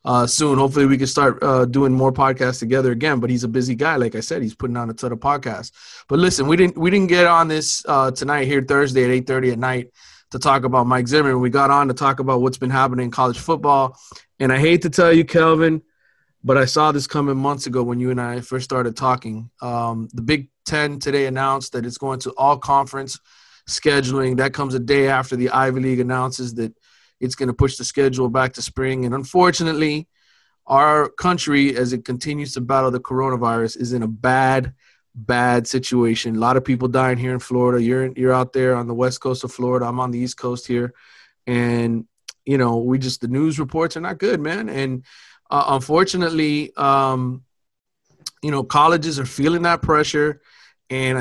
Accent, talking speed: American, 210 wpm